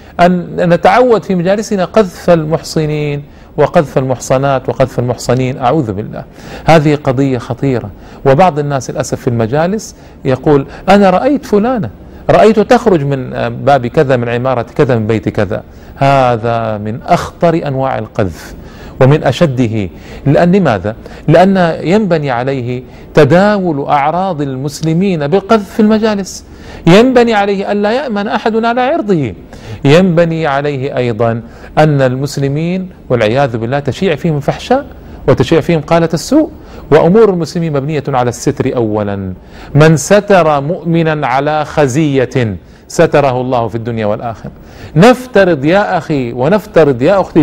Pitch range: 130-190 Hz